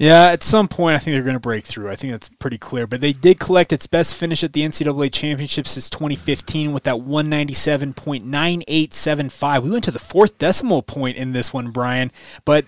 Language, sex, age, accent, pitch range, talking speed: English, male, 20-39, American, 135-170 Hz, 205 wpm